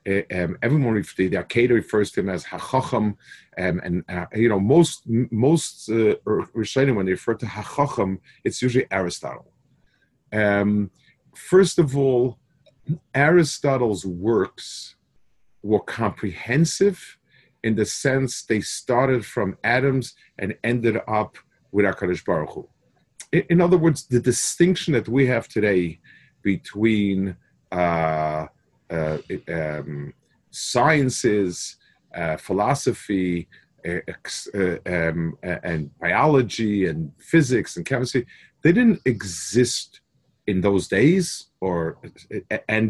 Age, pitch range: 40-59, 95-135 Hz